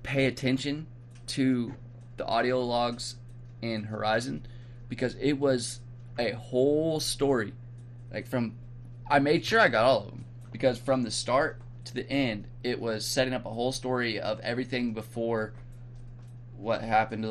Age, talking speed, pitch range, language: 20-39, 155 wpm, 115-125 Hz, English